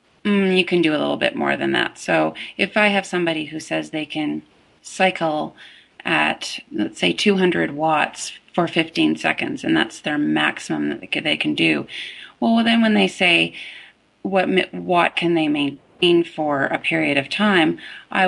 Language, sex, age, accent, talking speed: English, female, 30-49, American, 170 wpm